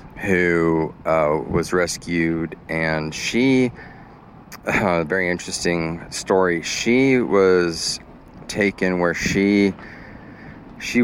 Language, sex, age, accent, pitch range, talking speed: English, male, 30-49, American, 80-95 Hz, 90 wpm